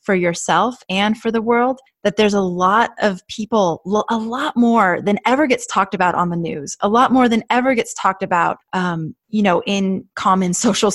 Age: 20-39